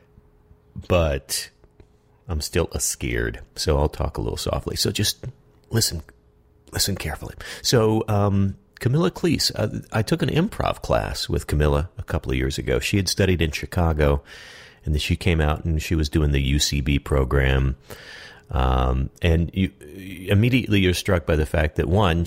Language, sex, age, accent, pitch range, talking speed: English, male, 40-59, American, 75-95 Hz, 165 wpm